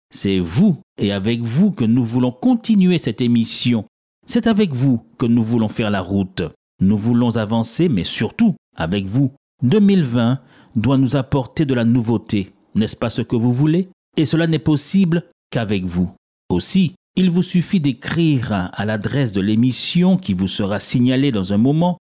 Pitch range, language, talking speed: 105-155 Hz, French, 170 wpm